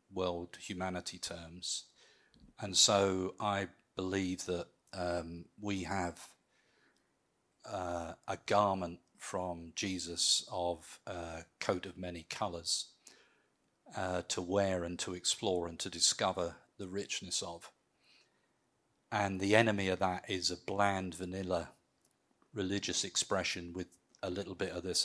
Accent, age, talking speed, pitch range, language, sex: British, 40-59, 120 wpm, 90-100 Hz, English, male